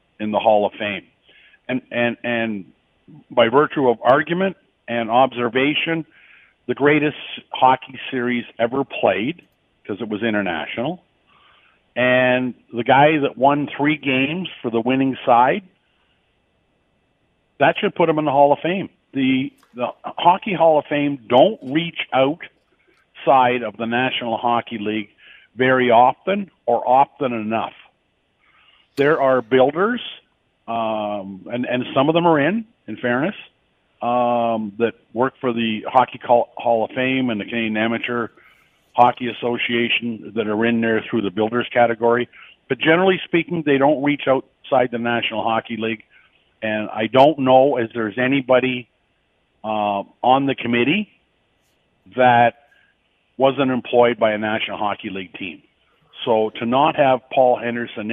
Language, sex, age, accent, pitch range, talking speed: English, male, 50-69, American, 115-140 Hz, 140 wpm